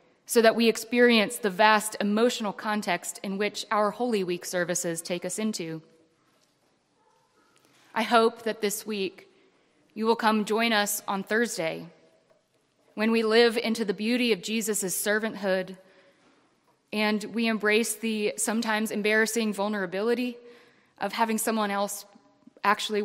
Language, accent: English, American